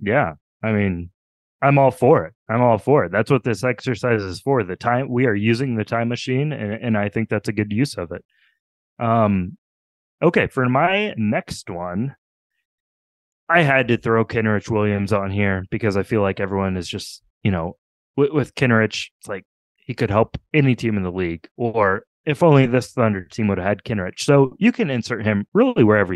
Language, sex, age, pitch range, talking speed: English, male, 20-39, 100-130 Hz, 200 wpm